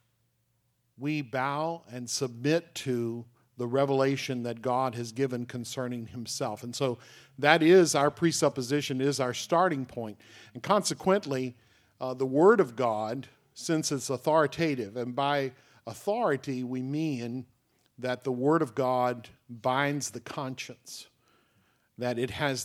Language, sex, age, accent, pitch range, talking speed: English, male, 50-69, American, 120-140 Hz, 130 wpm